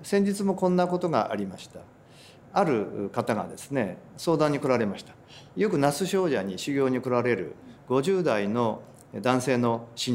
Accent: native